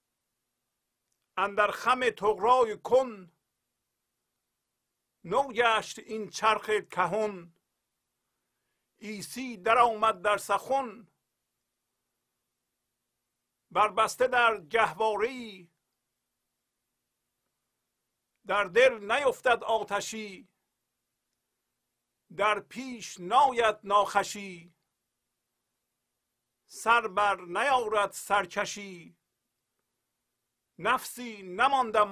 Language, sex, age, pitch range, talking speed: Persian, male, 50-69, 185-220 Hz, 55 wpm